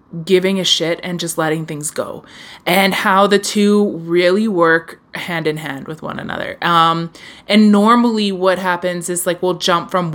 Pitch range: 165-190 Hz